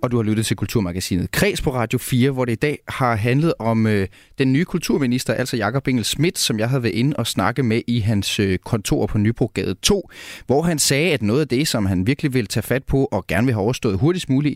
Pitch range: 105-135 Hz